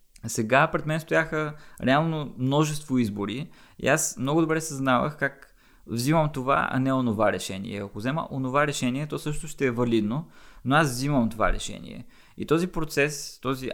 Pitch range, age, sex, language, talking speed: 110-150 Hz, 20-39, male, Bulgarian, 160 wpm